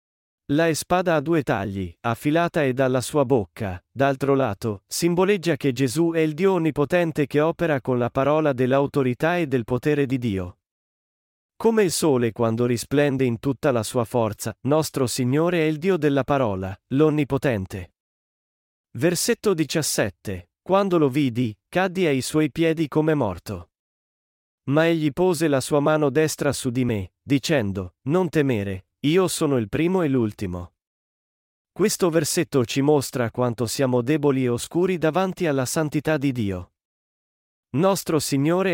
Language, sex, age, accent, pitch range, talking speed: Italian, male, 40-59, native, 115-160 Hz, 145 wpm